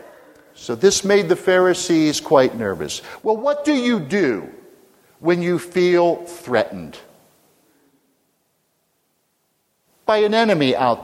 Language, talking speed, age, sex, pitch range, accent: English, 110 wpm, 50-69, male, 130-200 Hz, American